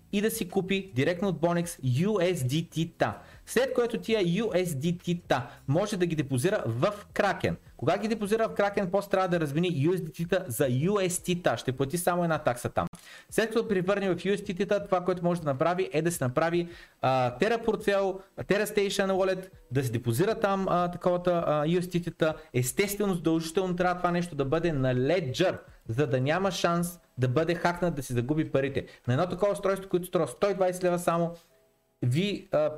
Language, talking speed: Bulgarian, 175 wpm